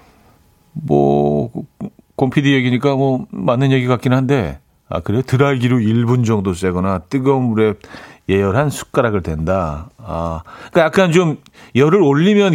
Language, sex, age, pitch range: Korean, male, 40-59, 105-155 Hz